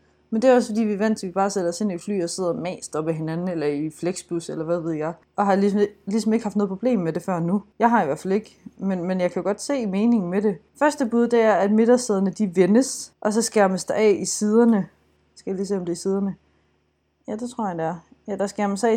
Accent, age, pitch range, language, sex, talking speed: native, 20-39, 170-220 Hz, Danish, female, 290 wpm